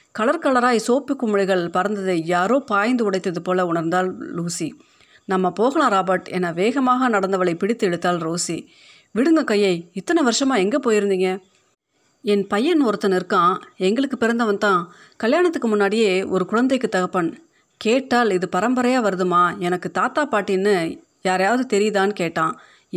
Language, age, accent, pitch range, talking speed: Tamil, 30-49, native, 180-240 Hz, 125 wpm